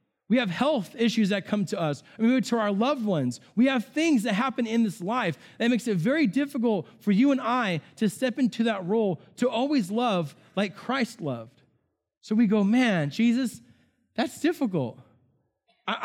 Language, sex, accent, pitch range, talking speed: English, male, American, 185-245 Hz, 185 wpm